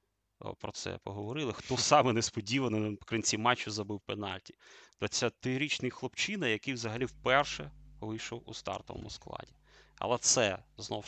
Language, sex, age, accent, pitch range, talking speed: Russian, male, 30-49, native, 105-135 Hz, 130 wpm